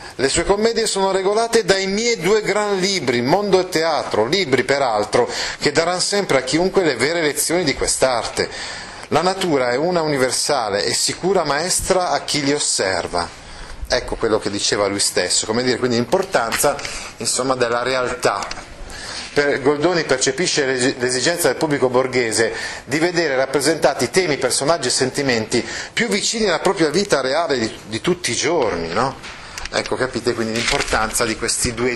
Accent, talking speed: native, 155 wpm